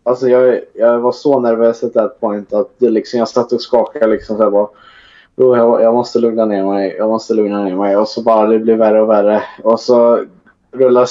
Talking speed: 230 wpm